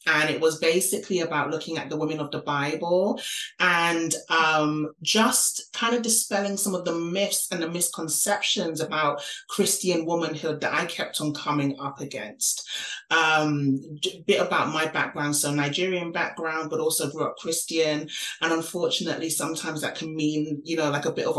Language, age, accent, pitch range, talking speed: English, 30-49, British, 150-175 Hz, 170 wpm